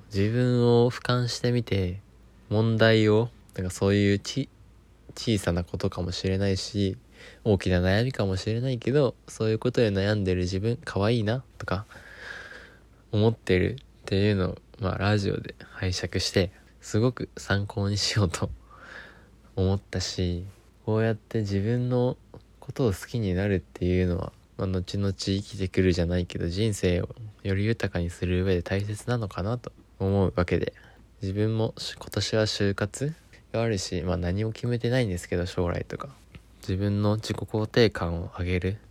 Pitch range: 95-110 Hz